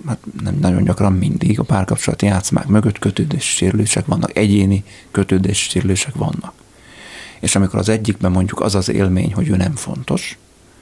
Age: 30-49